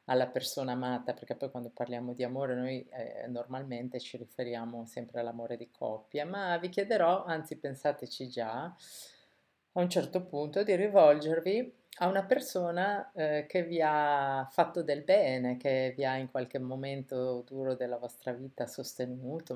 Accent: native